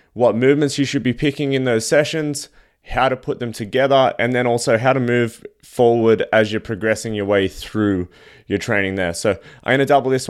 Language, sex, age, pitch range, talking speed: English, male, 20-39, 110-130 Hz, 210 wpm